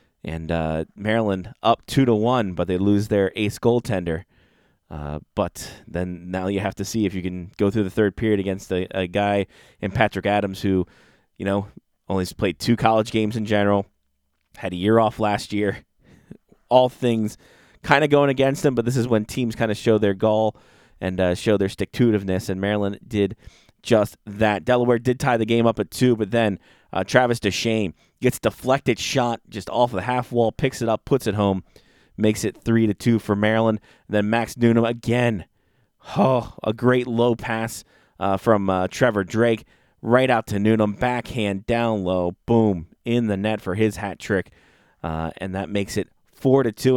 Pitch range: 95-120 Hz